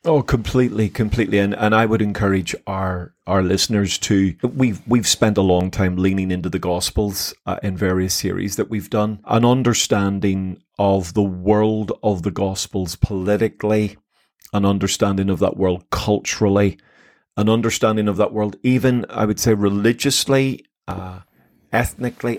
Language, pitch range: English, 100-120 Hz